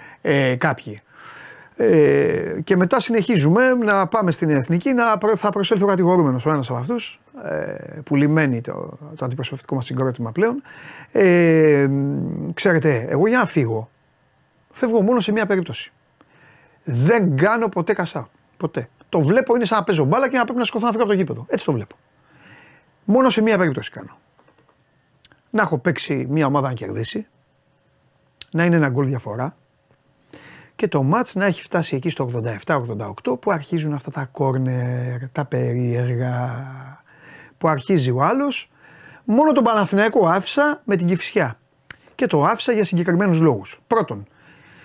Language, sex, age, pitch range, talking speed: Greek, male, 30-49, 135-210 Hz, 155 wpm